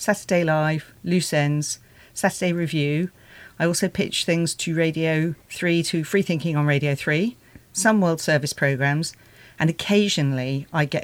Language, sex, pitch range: English, female, 145-175 Hz